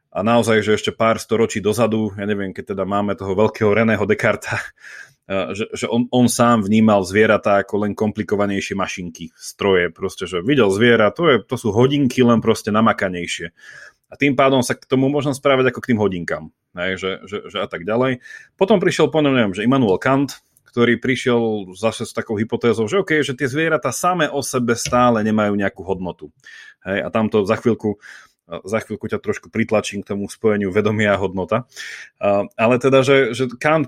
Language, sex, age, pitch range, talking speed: Slovak, male, 30-49, 105-135 Hz, 180 wpm